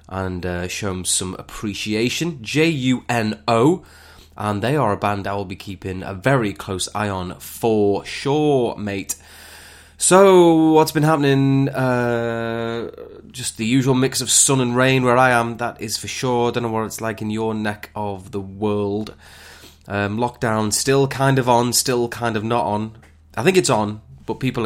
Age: 20-39